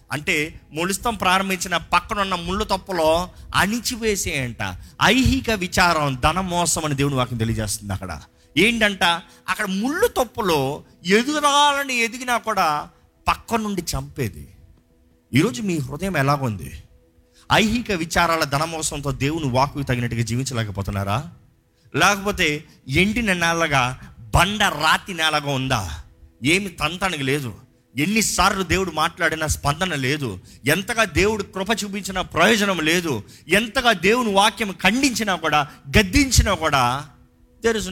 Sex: male